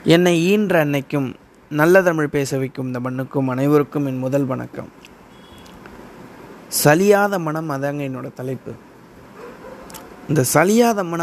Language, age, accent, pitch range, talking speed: Tamil, 20-39, native, 140-165 Hz, 110 wpm